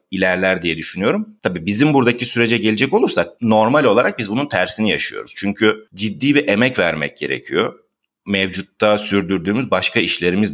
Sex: male